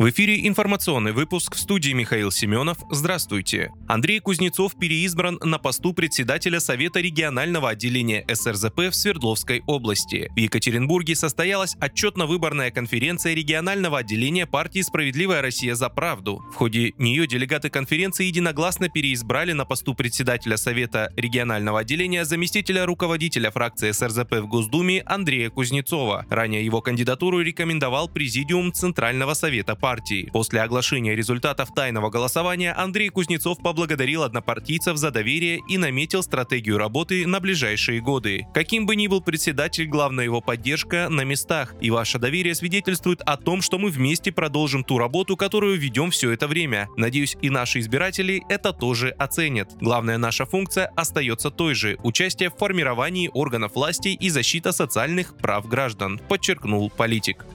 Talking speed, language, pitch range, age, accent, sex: 140 wpm, Russian, 120-175 Hz, 20-39, native, male